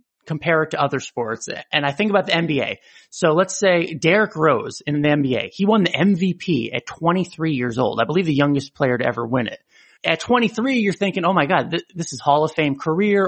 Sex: male